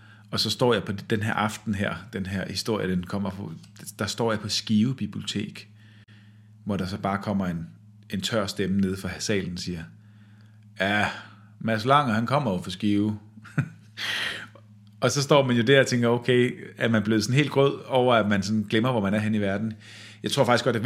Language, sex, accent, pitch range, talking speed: Danish, male, native, 100-120 Hz, 205 wpm